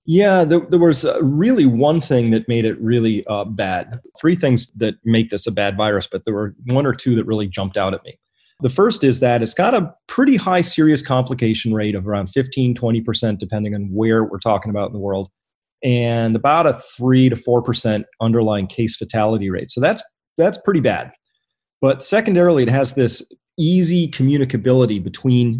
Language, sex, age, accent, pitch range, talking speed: English, male, 30-49, American, 110-135 Hz, 190 wpm